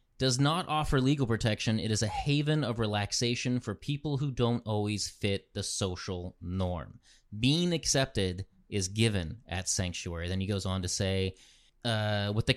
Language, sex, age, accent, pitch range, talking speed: English, male, 30-49, American, 95-120 Hz, 165 wpm